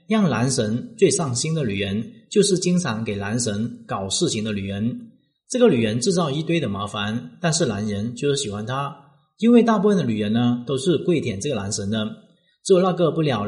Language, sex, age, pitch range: Chinese, male, 30-49, 115-175 Hz